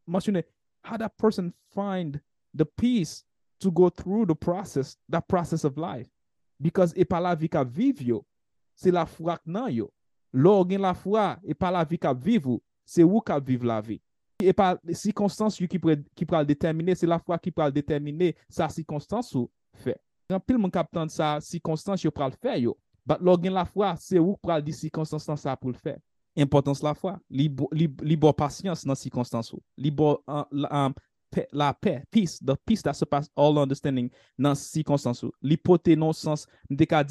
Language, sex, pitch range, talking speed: English, male, 145-180 Hz, 195 wpm